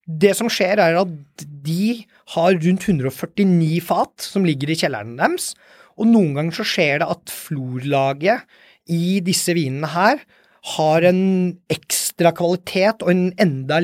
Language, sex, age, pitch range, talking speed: English, male, 30-49, 155-185 Hz, 150 wpm